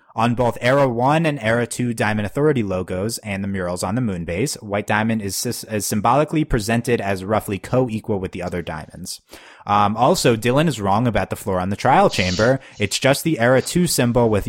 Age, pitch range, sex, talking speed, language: 30-49, 100-125 Hz, male, 200 wpm, English